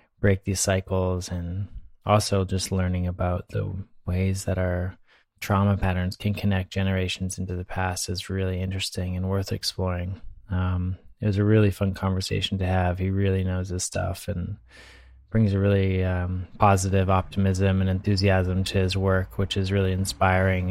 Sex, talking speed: male, 160 wpm